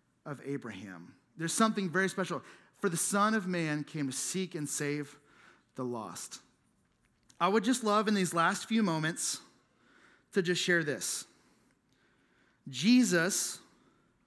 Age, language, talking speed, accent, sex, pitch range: 30-49, English, 135 wpm, American, male, 160-210 Hz